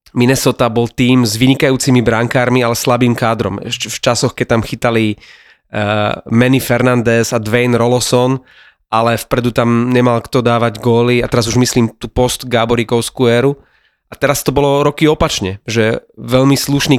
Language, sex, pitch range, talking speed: Slovak, male, 120-135 Hz, 155 wpm